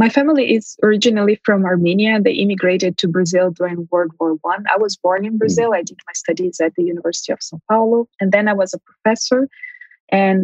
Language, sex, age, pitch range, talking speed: English, female, 20-39, 180-220 Hz, 205 wpm